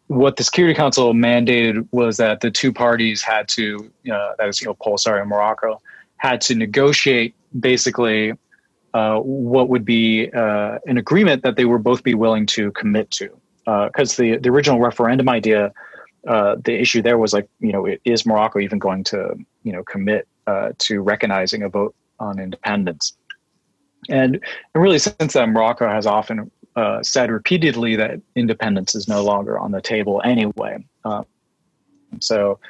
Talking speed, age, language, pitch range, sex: 170 wpm, 30-49, English, 110-130 Hz, male